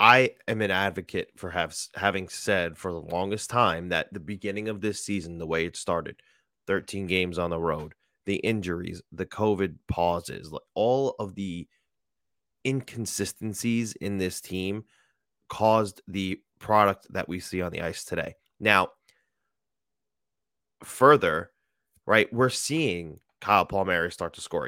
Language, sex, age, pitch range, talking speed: English, male, 30-49, 90-115 Hz, 140 wpm